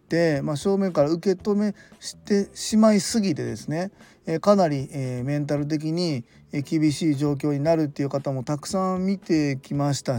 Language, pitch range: Japanese, 140-170 Hz